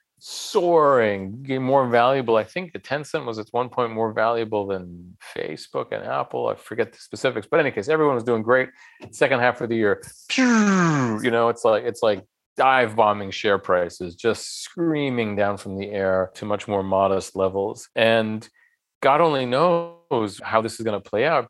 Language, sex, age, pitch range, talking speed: English, male, 40-59, 100-130 Hz, 185 wpm